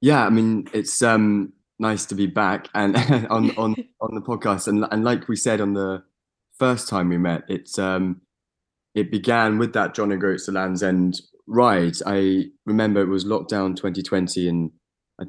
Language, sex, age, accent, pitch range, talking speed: English, male, 20-39, British, 85-100 Hz, 185 wpm